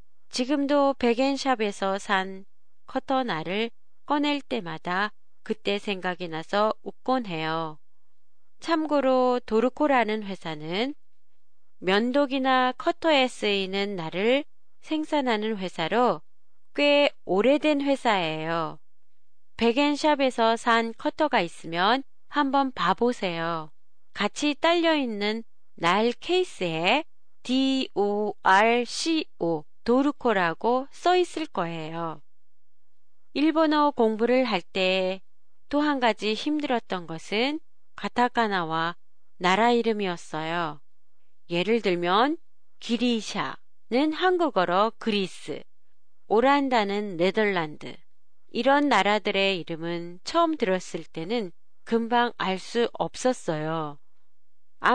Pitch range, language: 180-270 Hz, Japanese